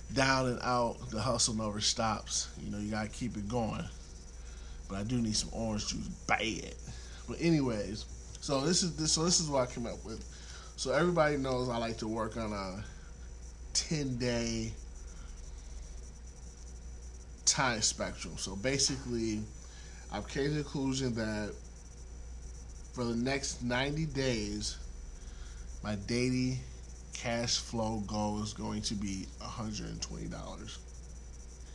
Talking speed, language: 145 wpm, English